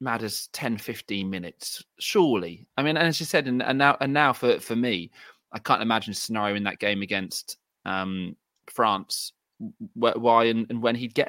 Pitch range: 105-125 Hz